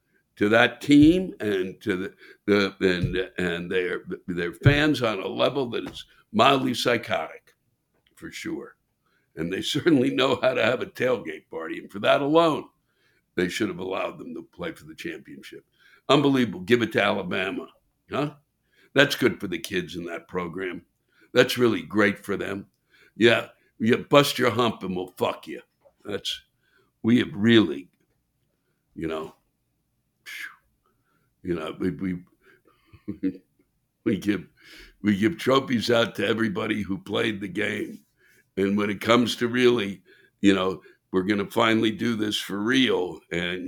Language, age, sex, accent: English, 60-79, male, American